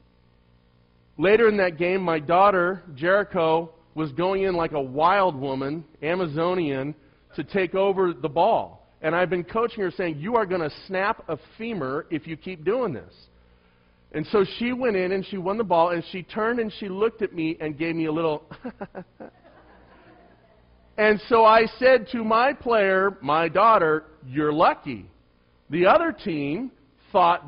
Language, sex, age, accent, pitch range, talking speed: English, male, 40-59, American, 110-180 Hz, 165 wpm